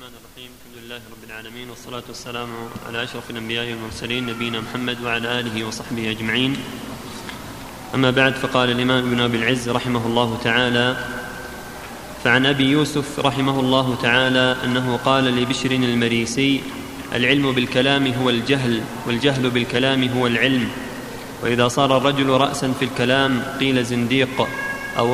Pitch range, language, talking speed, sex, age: 125-135 Hz, Arabic, 135 wpm, male, 30-49